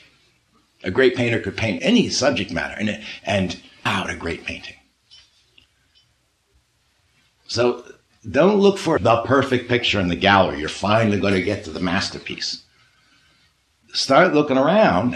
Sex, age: male, 60-79